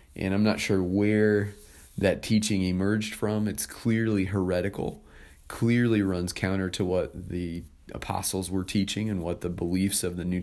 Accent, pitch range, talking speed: American, 85-100 Hz, 160 wpm